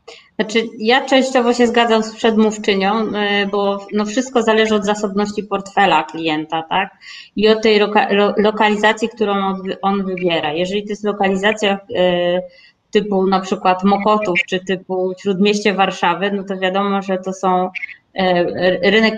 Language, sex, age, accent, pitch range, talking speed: Polish, female, 20-39, native, 180-205 Hz, 145 wpm